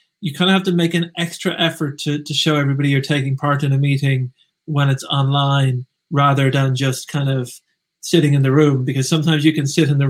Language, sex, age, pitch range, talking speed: English, male, 30-49, 140-160 Hz, 225 wpm